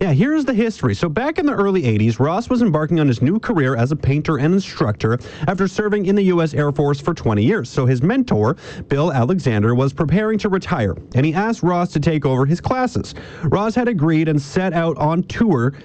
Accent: American